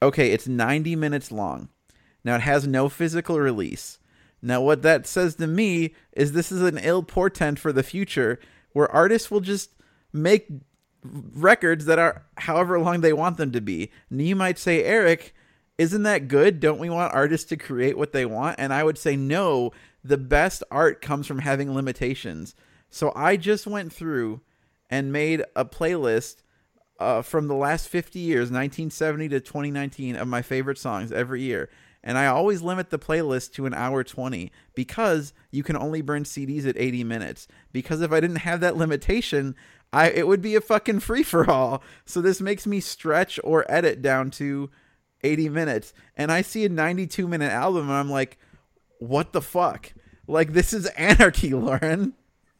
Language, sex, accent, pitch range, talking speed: English, male, American, 135-175 Hz, 175 wpm